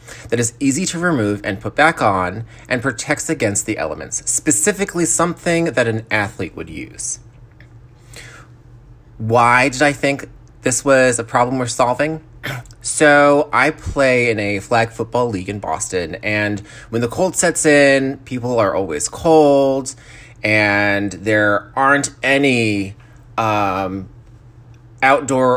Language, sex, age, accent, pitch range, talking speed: English, male, 30-49, American, 110-130 Hz, 135 wpm